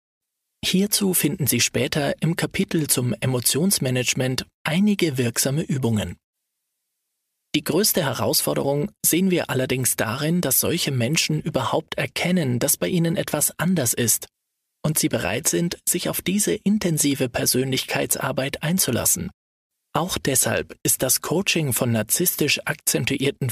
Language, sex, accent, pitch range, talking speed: German, male, German, 115-165 Hz, 120 wpm